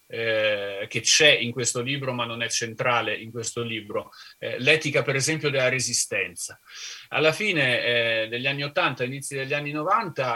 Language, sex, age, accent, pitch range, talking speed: Italian, male, 30-49, native, 120-165 Hz, 170 wpm